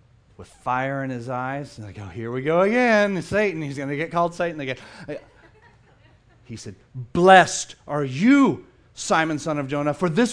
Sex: male